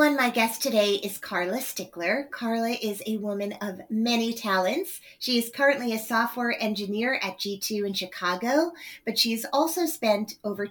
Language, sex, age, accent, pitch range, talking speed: English, female, 30-49, American, 190-235 Hz, 155 wpm